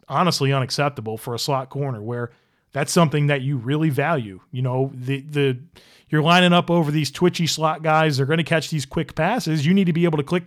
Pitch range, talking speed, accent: 135-170 Hz, 225 wpm, American